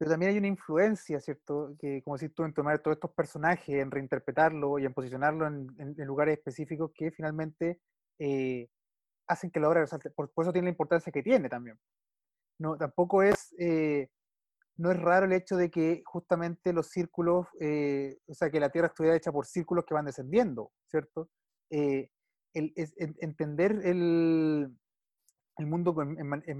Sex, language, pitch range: male, Spanish, 145-180 Hz